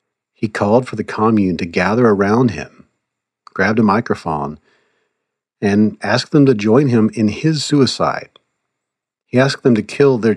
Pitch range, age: 85-120 Hz, 40-59